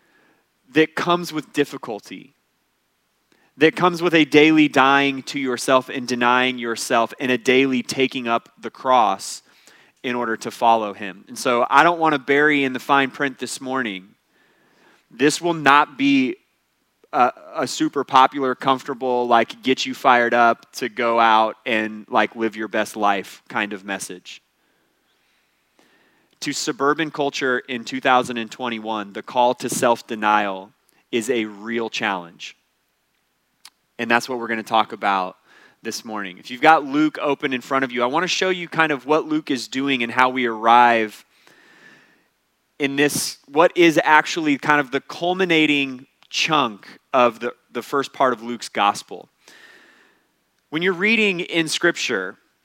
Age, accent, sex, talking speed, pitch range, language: 30-49, American, male, 155 wpm, 115-150 Hz, English